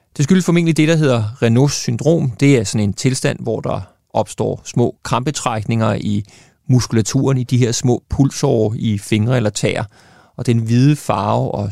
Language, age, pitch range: Danish, 30-49, 105-130 Hz